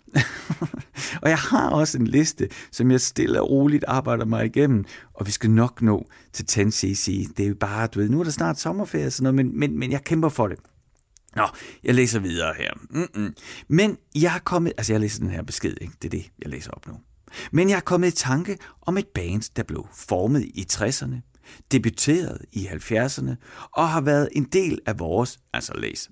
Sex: male